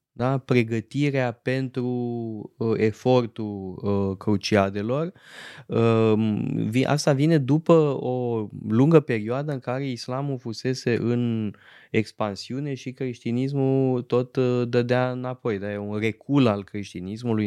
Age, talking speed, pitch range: 20-39, 95 wpm, 105-130 Hz